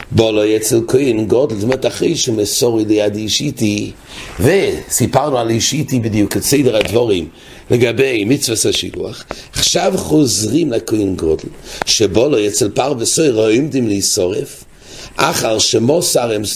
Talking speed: 90 wpm